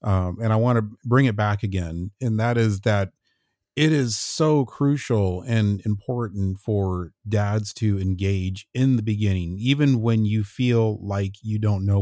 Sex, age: male, 40-59